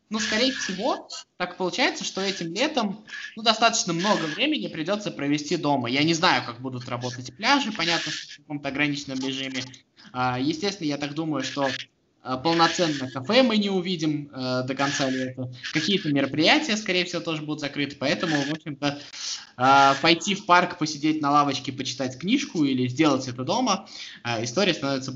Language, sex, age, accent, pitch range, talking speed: Russian, male, 20-39, native, 140-210 Hz, 155 wpm